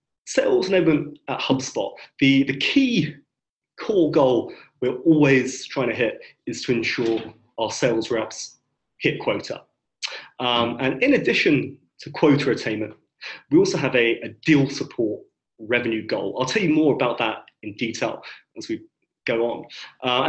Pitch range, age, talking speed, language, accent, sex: 125-155 Hz, 30-49, 150 wpm, Finnish, British, male